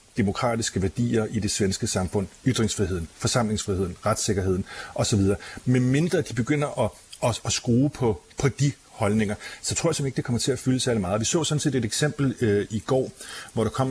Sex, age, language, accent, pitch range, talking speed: male, 40-59, Danish, native, 105-130 Hz, 200 wpm